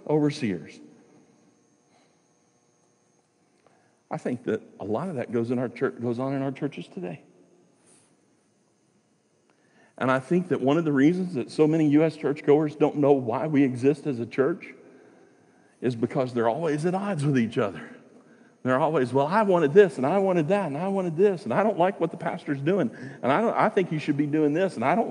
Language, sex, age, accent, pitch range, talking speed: English, male, 50-69, American, 135-195 Hz, 200 wpm